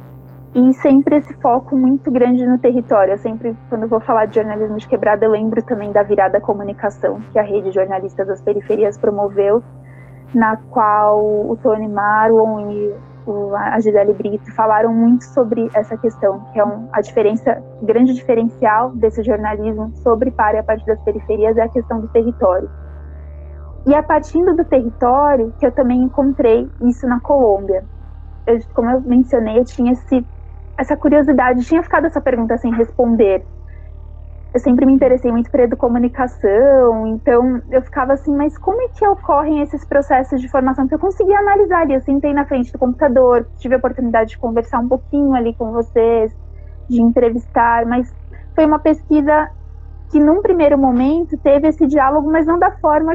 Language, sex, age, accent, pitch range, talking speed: Portuguese, female, 20-39, Brazilian, 215-275 Hz, 170 wpm